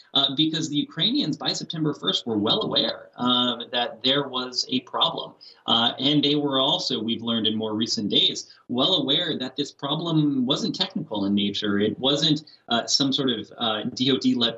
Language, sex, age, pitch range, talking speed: English, male, 30-49, 115-155 Hz, 180 wpm